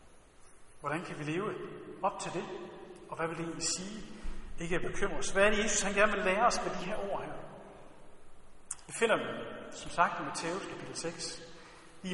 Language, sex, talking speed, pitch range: Danish, male, 200 wpm, 170-225 Hz